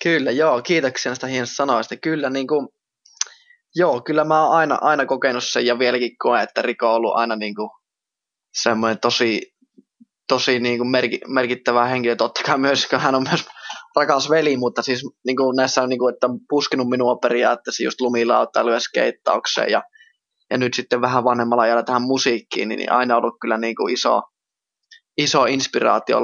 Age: 20-39